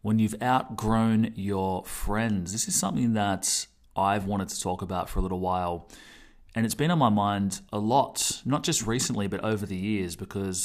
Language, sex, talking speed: English, male, 190 wpm